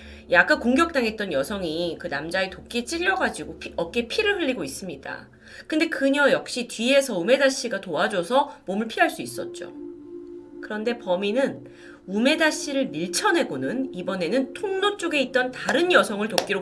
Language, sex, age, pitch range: Korean, female, 30-49, 180-290 Hz